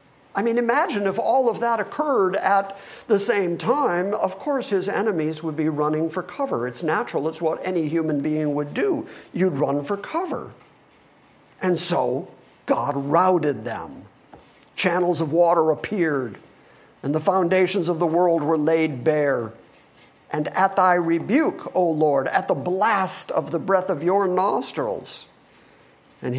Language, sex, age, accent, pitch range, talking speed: English, male, 50-69, American, 155-220 Hz, 155 wpm